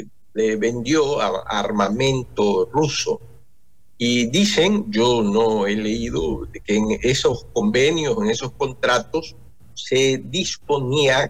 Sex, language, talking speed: male, Spanish, 100 wpm